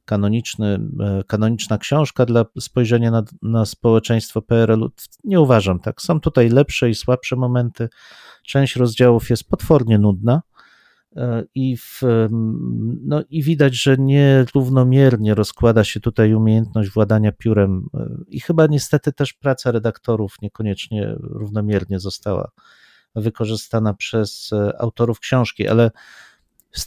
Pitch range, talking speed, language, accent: 105-130 Hz, 110 wpm, Polish, native